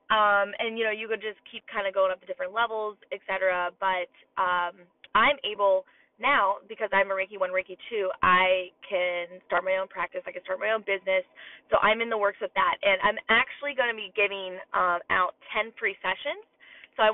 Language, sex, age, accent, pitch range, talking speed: English, female, 20-39, American, 190-235 Hz, 215 wpm